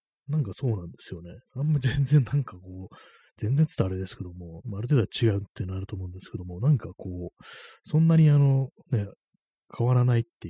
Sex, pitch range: male, 95-125 Hz